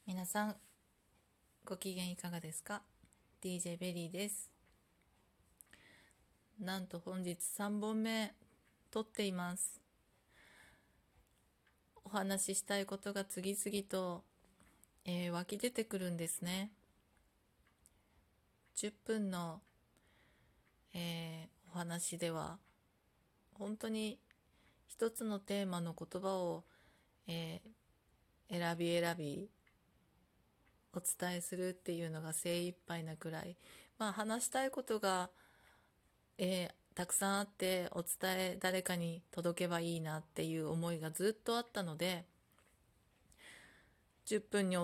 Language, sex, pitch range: Japanese, female, 170-200 Hz